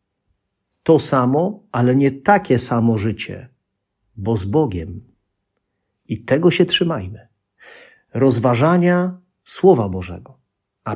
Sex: male